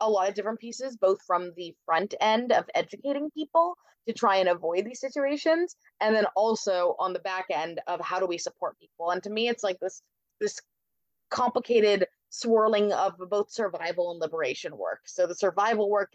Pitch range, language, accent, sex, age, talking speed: 180-220 Hz, English, American, female, 20-39, 190 wpm